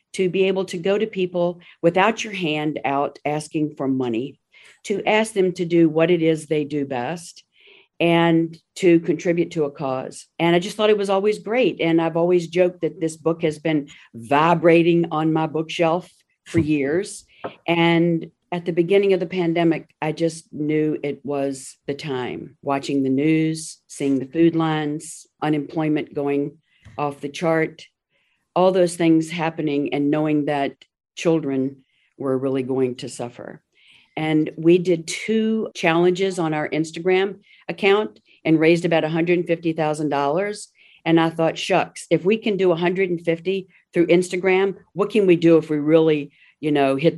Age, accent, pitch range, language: 50-69, American, 150-180 Hz, English